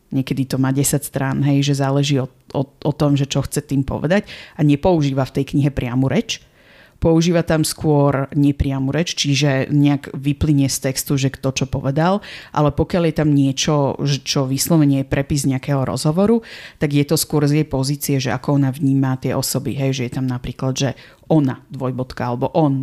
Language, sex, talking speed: Slovak, female, 190 wpm